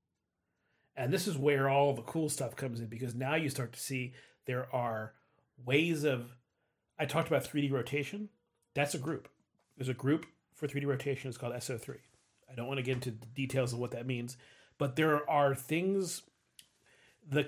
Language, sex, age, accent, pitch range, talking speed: English, male, 30-49, American, 125-150 Hz, 180 wpm